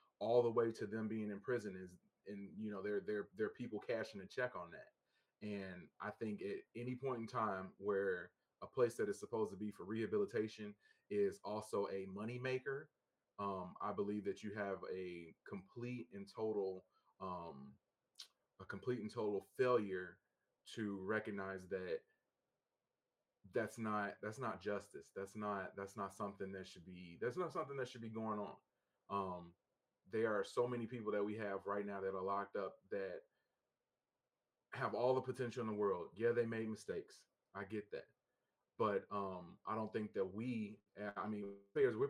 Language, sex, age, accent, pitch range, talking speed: English, male, 30-49, American, 100-120 Hz, 175 wpm